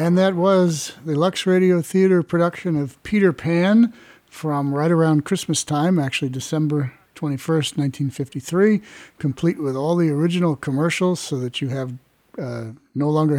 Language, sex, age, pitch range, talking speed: English, male, 50-69, 140-175 Hz, 150 wpm